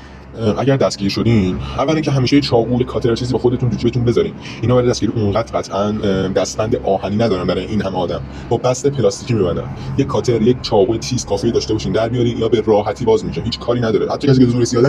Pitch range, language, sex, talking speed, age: 105-130 Hz, Persian, male, 190 wpm, 20-39